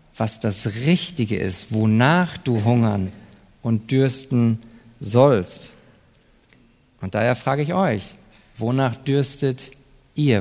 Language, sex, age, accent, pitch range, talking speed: German, male, 50-69, German, 115-195 Hz, 105 wpm